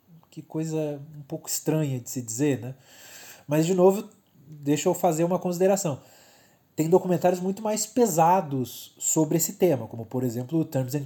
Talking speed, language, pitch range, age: 165 wpm, Portuguese, 135-180 Hz, 20-39